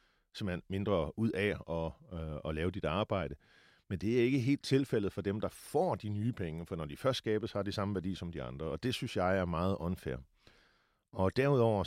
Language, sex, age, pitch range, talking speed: Danish, male, 40-59, 90-115 Hz, 215 wpm